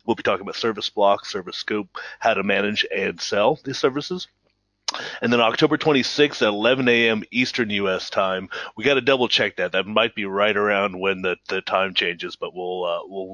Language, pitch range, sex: English, 105-135 Hz, male